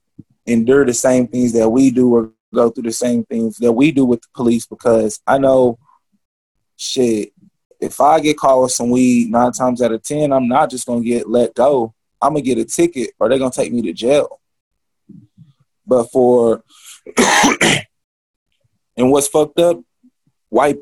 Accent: American